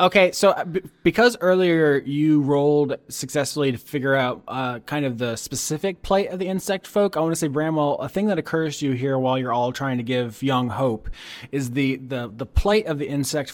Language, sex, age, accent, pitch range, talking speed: English, male, 20-39, American, 125-155 Hz, 215 wpm